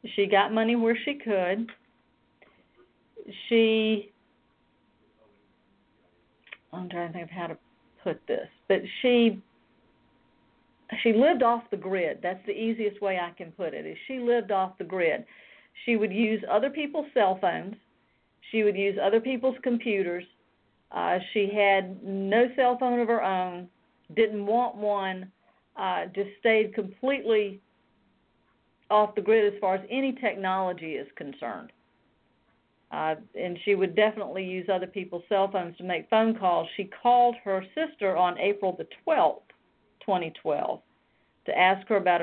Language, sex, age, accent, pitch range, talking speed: English, female, 50-69, American, 185-225 Hz, 145 wpm